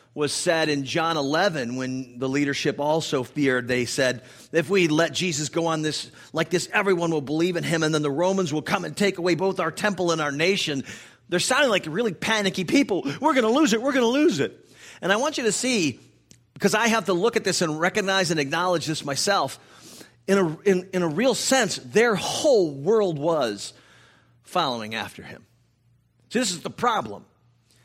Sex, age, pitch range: male, 40-59, 120-185 Hz